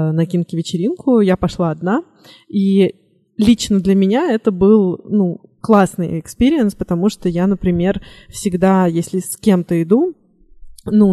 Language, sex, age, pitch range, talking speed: Russian, female, 20-39, 180-210 Hz, 135 wpm